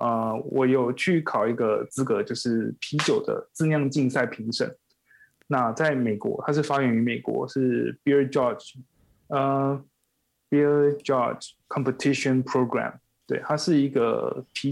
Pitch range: 130-165 Hz